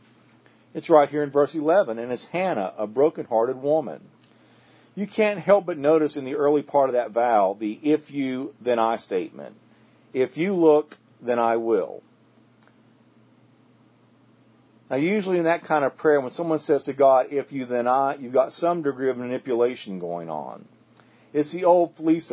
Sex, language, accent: male, English, American